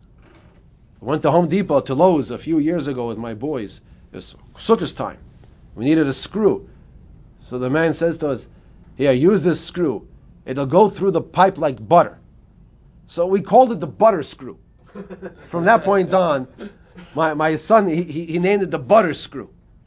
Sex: male